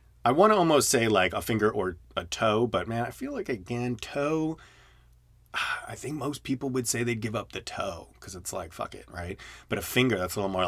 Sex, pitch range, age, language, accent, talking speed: male, 95-125 Hz, 30-49, English, American, 235 wpm